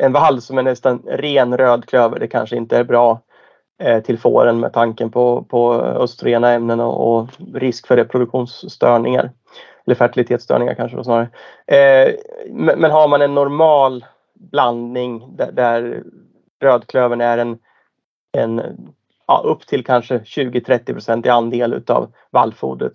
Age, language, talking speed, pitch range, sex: 30-49, Swedish, 140 wpm, 120-135 Hz, male